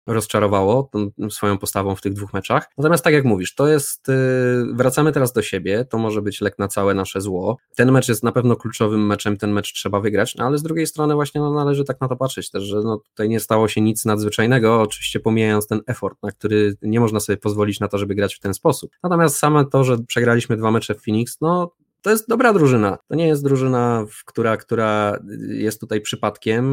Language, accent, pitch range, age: Polish, native, 105-140 Hz, 20-39